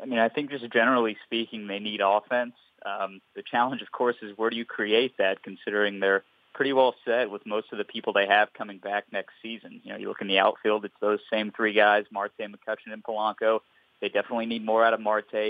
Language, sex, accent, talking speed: English, male, American, 230 wpm